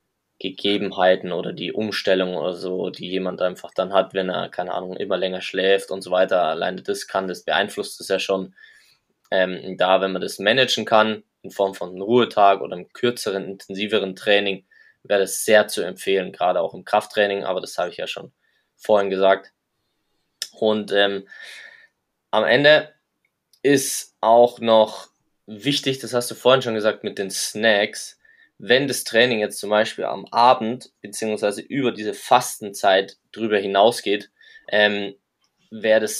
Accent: German